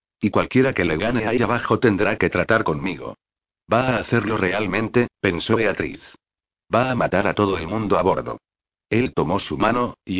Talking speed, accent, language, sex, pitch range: 180 wpm, Spanish, Spanish, male, 95-115 Hz